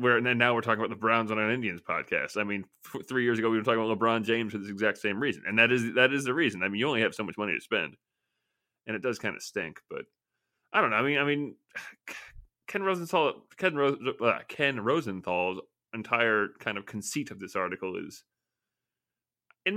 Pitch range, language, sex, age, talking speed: 110-130 Hz, English, male, 30-49, 235 wpm